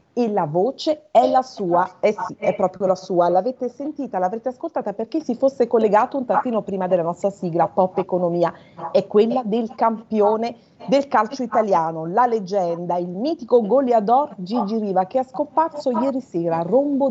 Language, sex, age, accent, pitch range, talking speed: Italian, female, 40-59, native, 180-245 Hz, 165 wpm